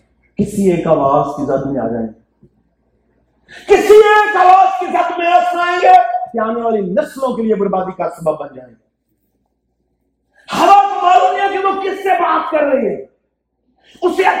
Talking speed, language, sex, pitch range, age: 110 wpm, Urdu, male, 265-340 Hz, 50-69